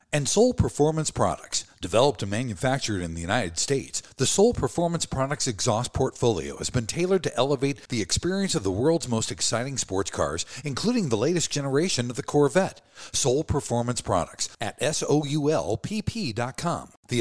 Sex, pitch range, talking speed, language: male, 110-155 Hz, 155 wpm, English